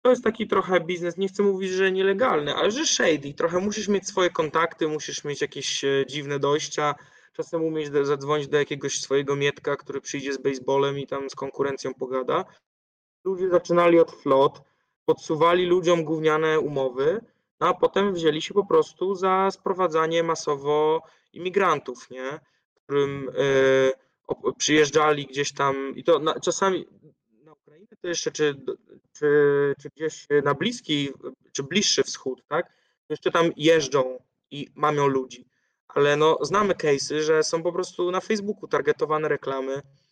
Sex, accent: male, native